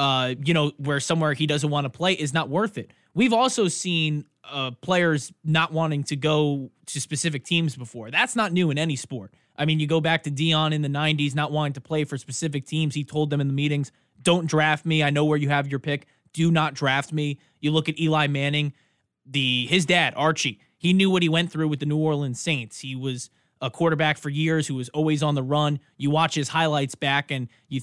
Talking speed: 235 wpm